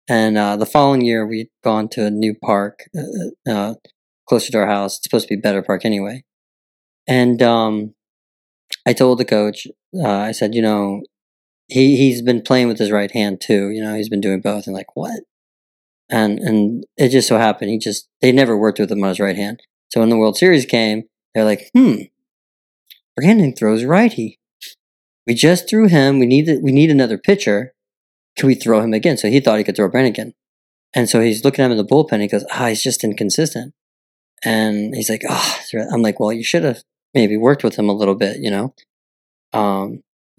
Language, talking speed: English, 215 wpm